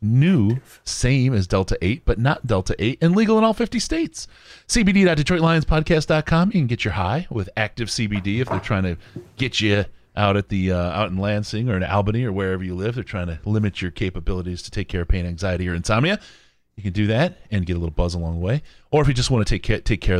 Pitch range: 80-115 Hz